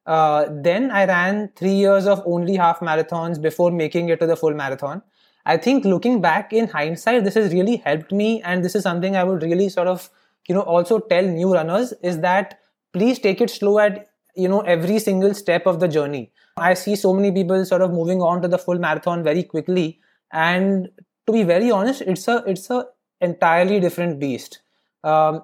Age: 20-39